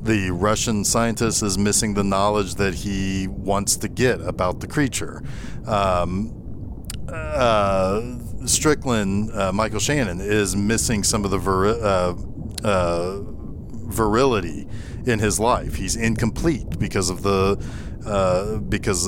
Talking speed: 125 wpm